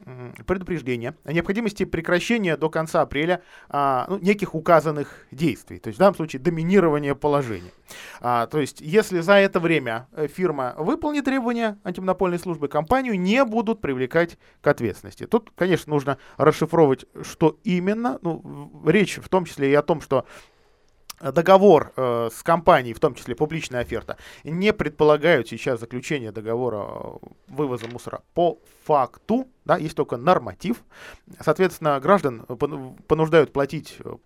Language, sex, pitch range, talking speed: Russian, male, 135-180 Hz, 135 wpm